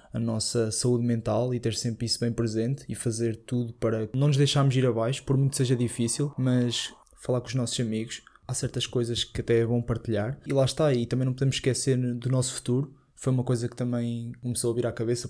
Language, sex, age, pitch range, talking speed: Portuguese, male, 20-39, 115-125 Hz, 230 wpm